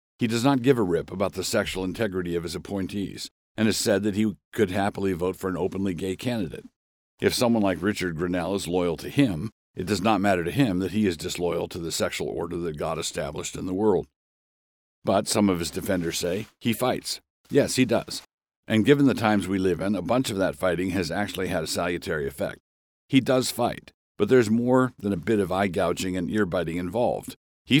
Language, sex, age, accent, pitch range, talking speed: English, male, 60-79, American, 90-110 Hz, 215 wpm